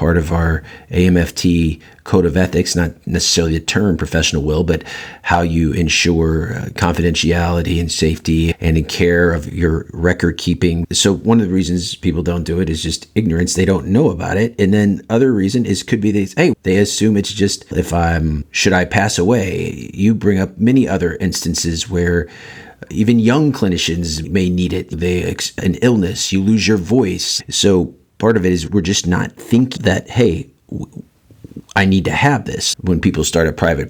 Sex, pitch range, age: male, 85-100 Hz, 50-69